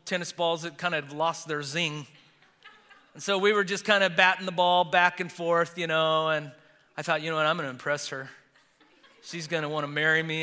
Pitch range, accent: 170-230 Hz, American